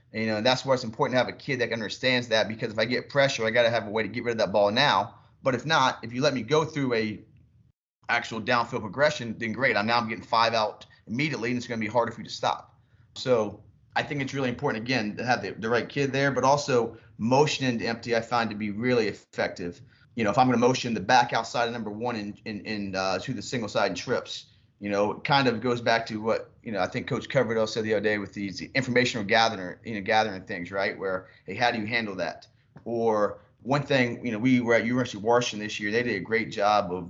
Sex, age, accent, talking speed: male, 30-49, American, 270 wpm